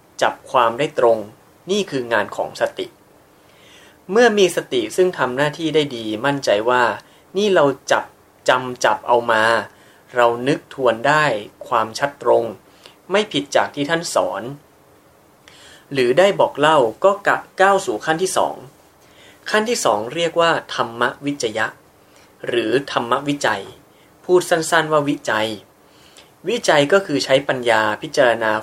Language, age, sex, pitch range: Thai, 20-39, male, 115-155 Hz